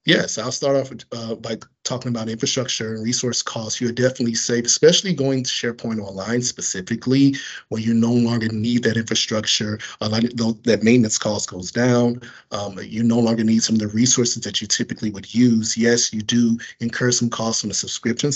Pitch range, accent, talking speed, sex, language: 110-120 Hz, American, 185 wpm, male, English